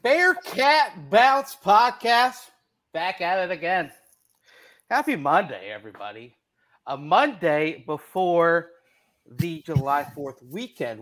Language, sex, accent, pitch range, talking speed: English, male, American, 130-170 Hz, 95 wpm